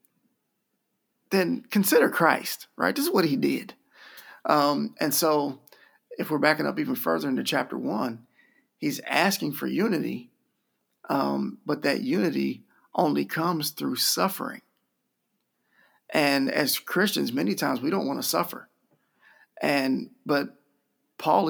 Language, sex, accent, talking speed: English, male, American, 130 wpm